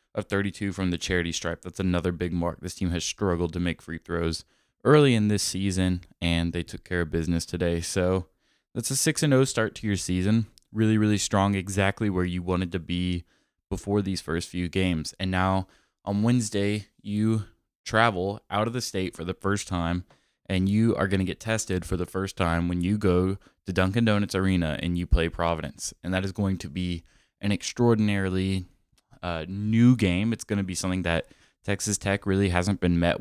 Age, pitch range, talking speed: 20-39, 85-100 Hz, 200 wpm